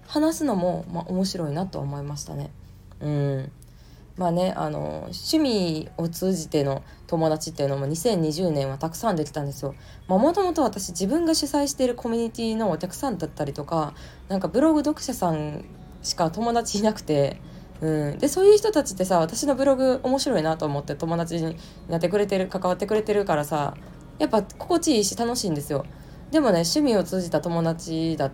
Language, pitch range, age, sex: Japanese, 145-210 Hz, 20-39, female